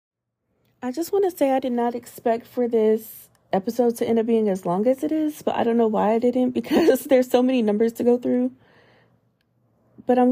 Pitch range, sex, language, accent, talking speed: 210-240 Hz, female, English, American, 220 wpm